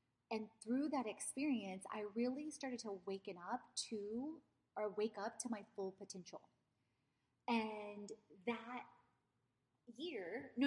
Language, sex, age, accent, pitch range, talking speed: English, female, 30-49, American, 195-250 Hz, 125 wpm